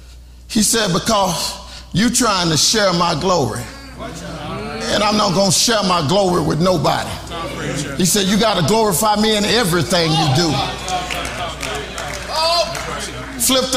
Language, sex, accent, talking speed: English, male, American, 125 wpm